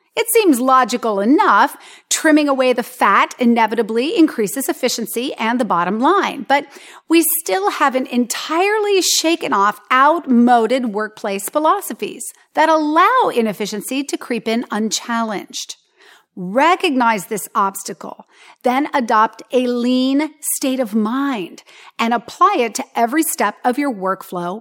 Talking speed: 125 wpm